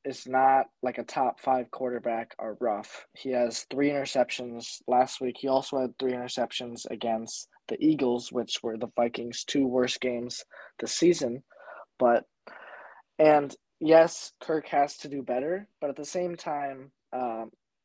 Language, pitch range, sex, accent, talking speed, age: English, 120-140 Hz, male, American, 155 wpm, 20-39